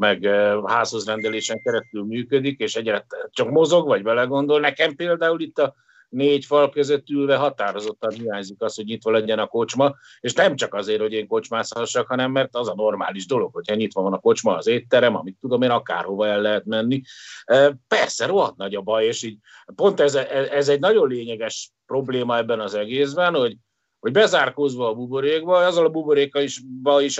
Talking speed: 185 wpm